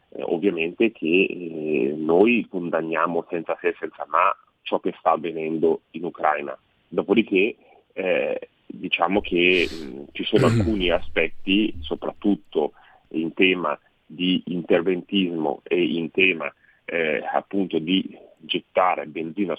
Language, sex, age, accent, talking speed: Italian, male, 30-49, native, 115 wpm